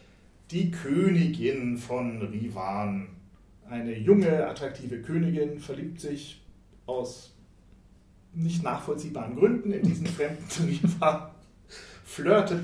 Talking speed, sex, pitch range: 95 wpm, male, 110-150 Hz